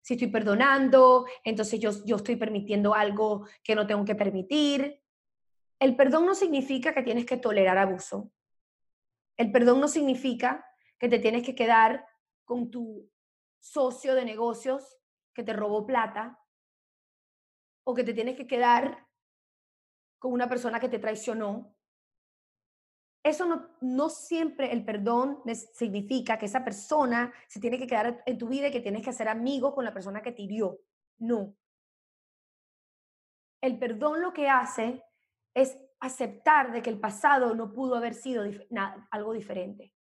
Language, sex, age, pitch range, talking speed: English, female, 20-39, 220-265 Hz, 150 wpm